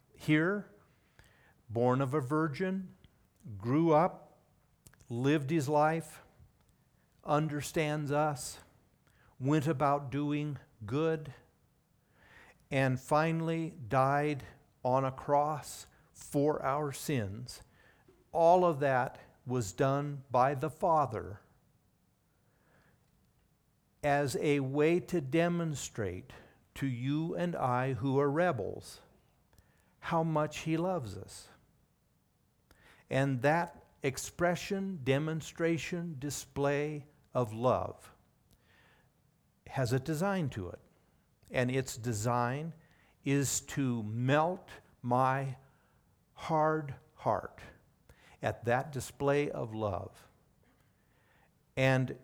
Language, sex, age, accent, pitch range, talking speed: English, male, 60-79, American, 125-155 Hz, 90 wpm